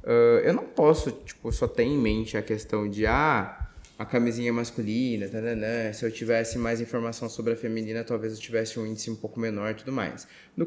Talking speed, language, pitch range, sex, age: 230 wpm, Portuguese, 110-130 Hz, male, 20-39